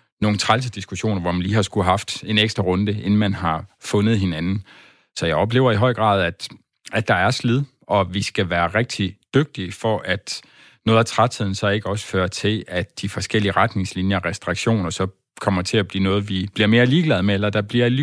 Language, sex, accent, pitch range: Danish, male, native, 95-120 Hz